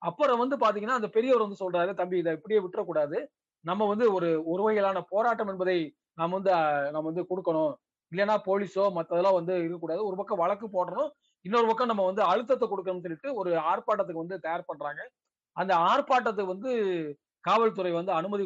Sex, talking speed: male, 165 wpm